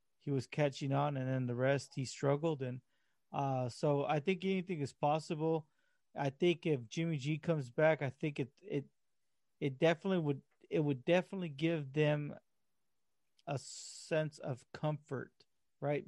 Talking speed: 155 wpm